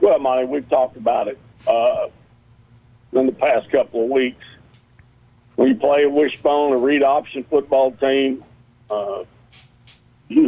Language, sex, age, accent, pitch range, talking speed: English, male, 50-69, American, 120-135 Hz, 145 wpm